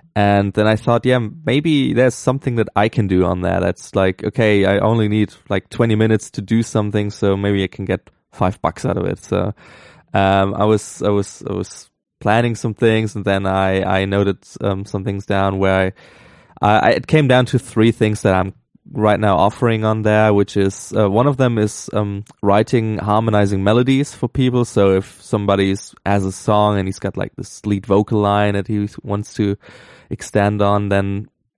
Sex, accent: male, German